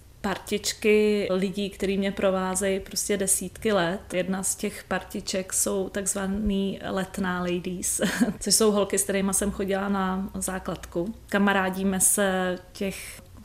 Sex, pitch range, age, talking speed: female, 190-205 Hz, 30-49, 125 wpm